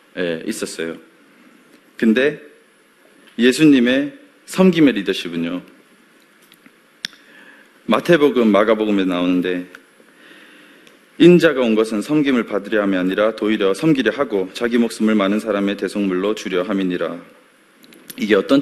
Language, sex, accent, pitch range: Korean, male, native, 95-140 Hz